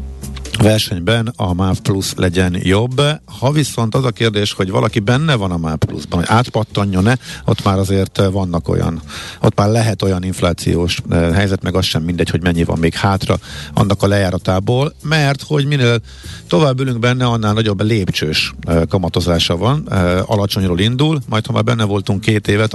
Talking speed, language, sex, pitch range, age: 170 wpm, Hungarian, male, 90-115 Hz, 50-69